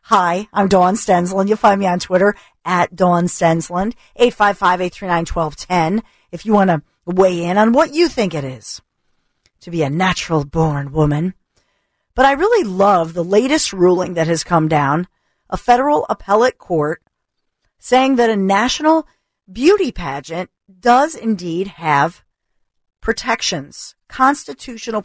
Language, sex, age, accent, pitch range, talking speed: English, female, 40-59, American, 175-235 Hz, 135 wpm